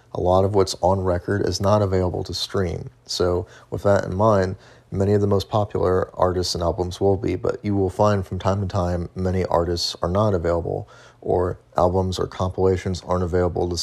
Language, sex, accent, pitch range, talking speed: English, male, American, 90-105 Hz, 200 wpm